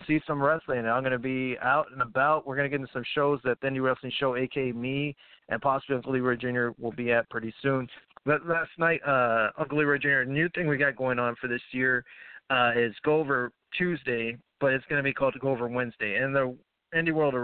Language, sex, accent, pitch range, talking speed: English, male, American, 120-140 Hz, 235 wpm